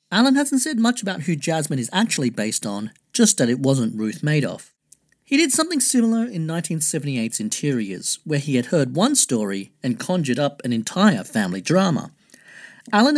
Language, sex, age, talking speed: English, male, 40-59, 175 wpm